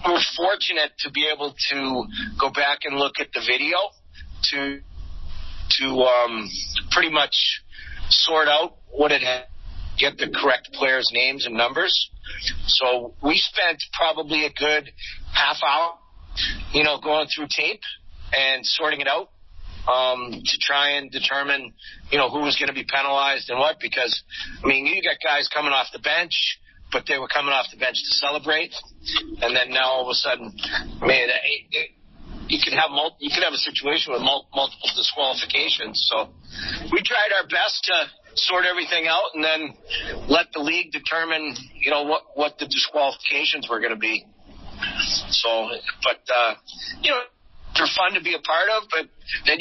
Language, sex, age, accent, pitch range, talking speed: English, male, 40-59, American, 125-155 Hz, 175 wpm